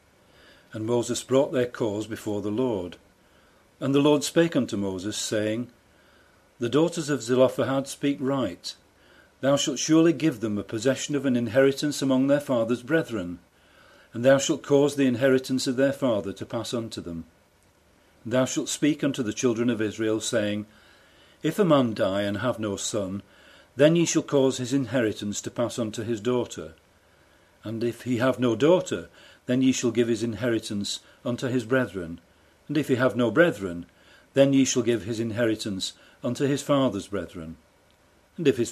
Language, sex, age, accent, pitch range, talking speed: English, male, 40-59, British, 105-135 Hz, 170 wpm